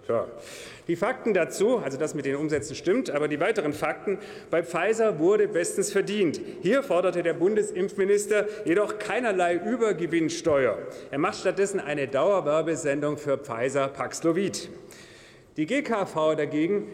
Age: 40-59